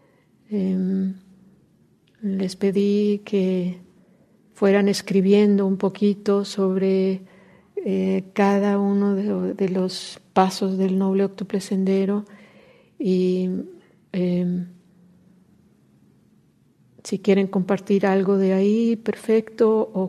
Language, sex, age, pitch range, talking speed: English, female, 50-69, 185-215 Hz, 90 wpm